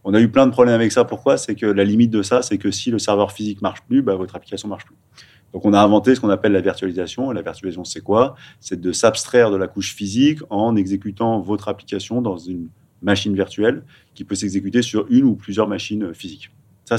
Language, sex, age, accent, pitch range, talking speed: French, male, 30-49, French, 100-120 Hz, 235 wpm